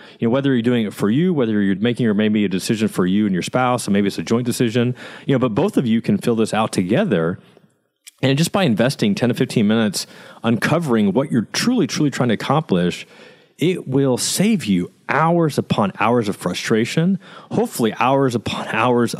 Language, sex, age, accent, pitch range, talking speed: English, male, 30-49, American, 115-160 Hz, 205 wpm